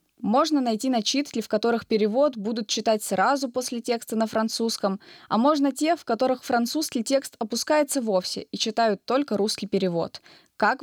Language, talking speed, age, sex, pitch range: Russian, 155 wpm, 20-39, female, 195-250 Hz